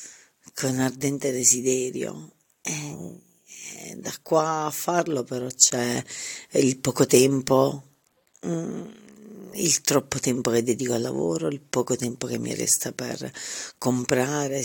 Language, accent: Italian, native